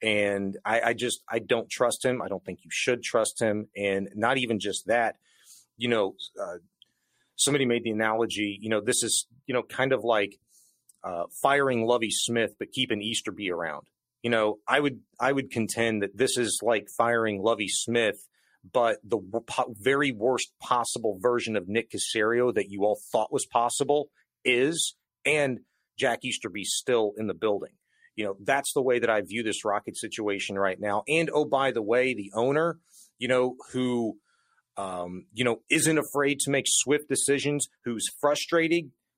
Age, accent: 30-49, American